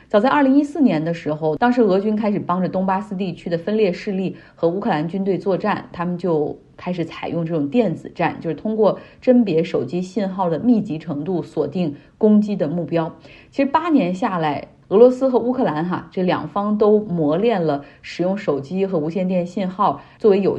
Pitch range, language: 160-205 Hz, Chinese